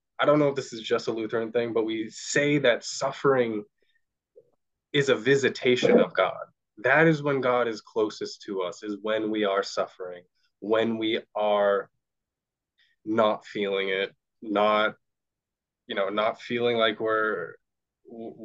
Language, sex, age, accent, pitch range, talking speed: English, male, 20-39, American, 110-155 Hz, 150 wpm